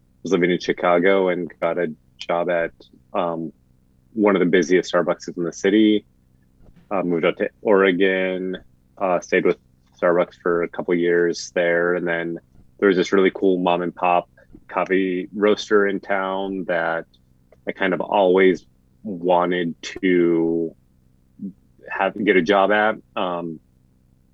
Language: English